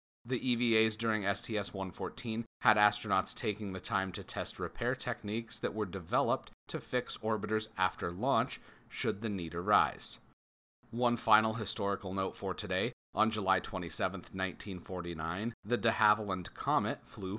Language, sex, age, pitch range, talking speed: English, male, 30-49, 95-115 Hz, 140 wpm